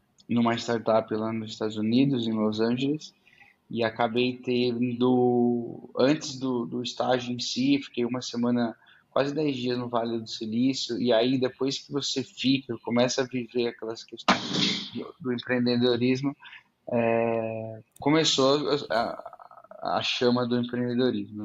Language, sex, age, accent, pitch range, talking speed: Portuguese, male, 10-29, Brazilian, 115-130 Hz, 140 wpm